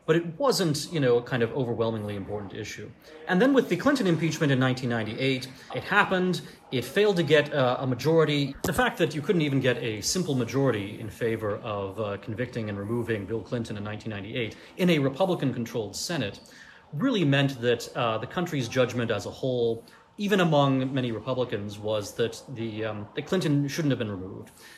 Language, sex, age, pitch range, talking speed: English, male, 30-49, 110-150 Hz, 180 wpm